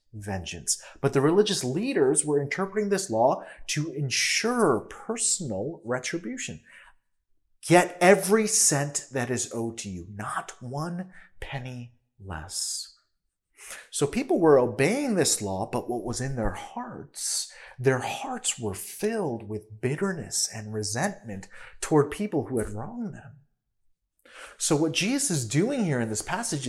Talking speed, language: 135 wpm, English